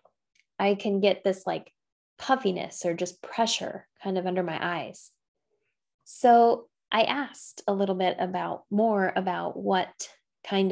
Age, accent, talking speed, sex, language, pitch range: 10-29, American, 140 wpm, female, English, 185-230 Hz